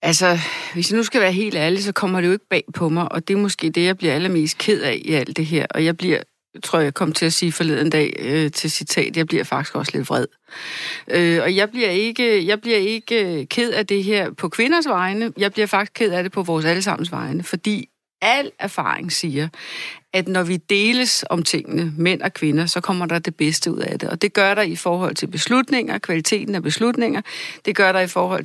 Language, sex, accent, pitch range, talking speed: Danish, female, native, 170-215 Hz, 240 wpm